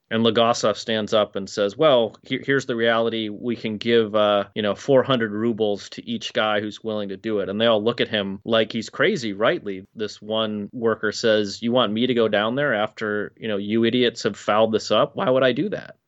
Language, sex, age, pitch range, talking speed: English, male, 30-49, 105-120 Hz, 230 wpm